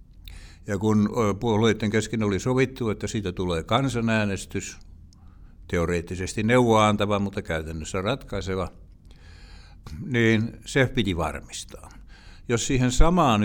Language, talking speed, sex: Finnish, 105 wpm, male